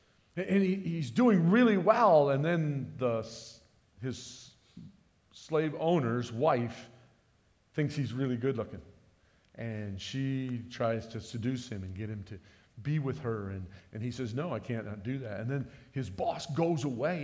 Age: 40-59